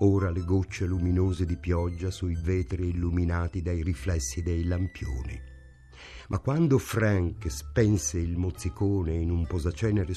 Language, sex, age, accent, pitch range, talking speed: Italian, male, 50-69, native, 85-105 Hz, 130 wpm